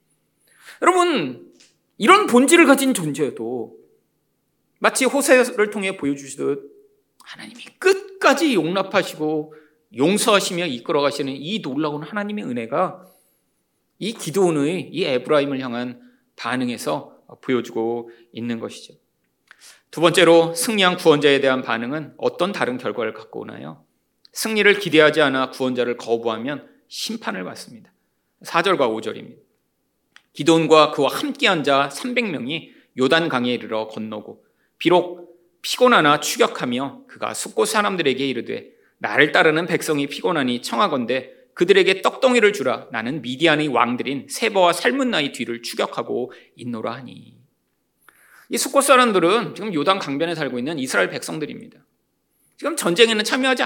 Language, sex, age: Korean, male, 40-59